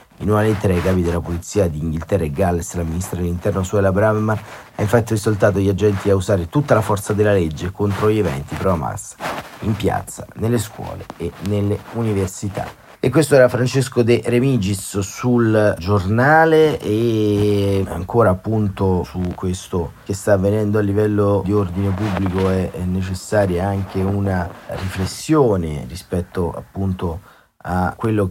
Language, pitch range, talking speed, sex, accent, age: Italian, 90-105 Hz, 150 wpm, male, native, 30-49